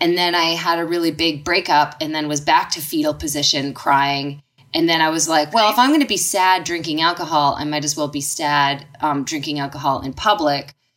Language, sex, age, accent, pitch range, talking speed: English, female, 20-39, American, 145-185 Hz, 225 wpm